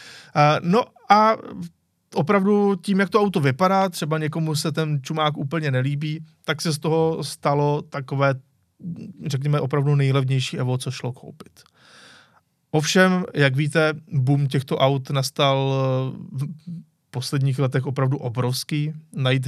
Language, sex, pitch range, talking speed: Czech, male, 130-160 Hz, 125 wpm